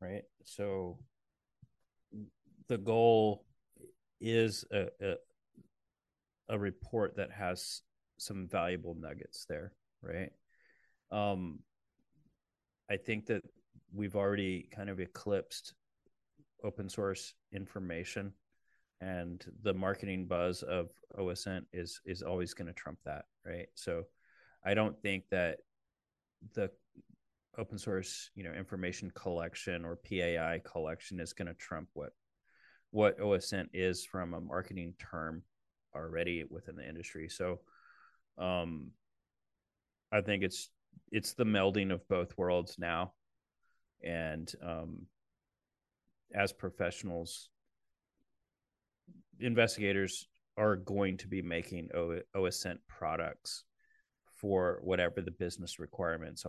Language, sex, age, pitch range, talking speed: English, male, 30-49, 85-105 Hz, 110 wpm